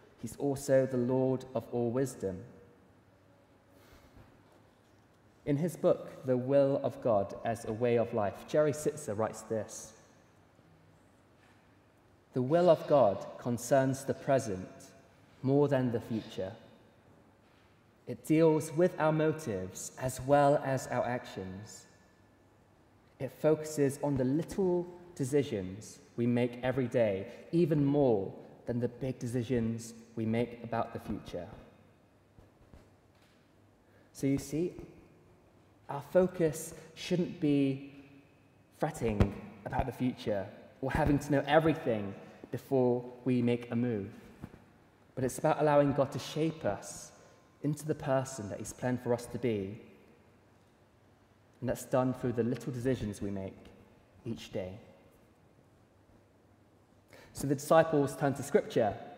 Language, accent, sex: English, British, male